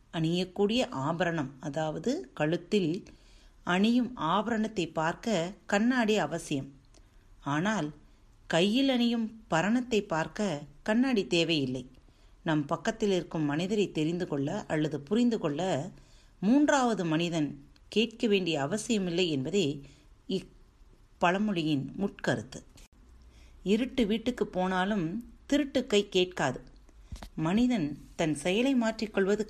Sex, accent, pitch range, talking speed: female, native, 145-215 Hz, 85 wpm